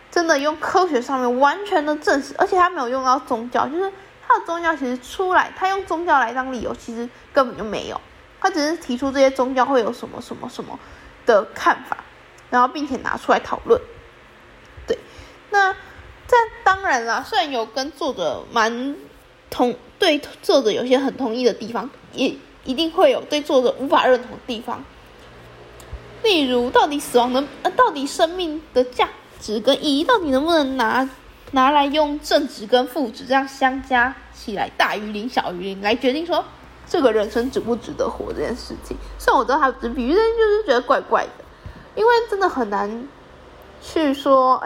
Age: 20-39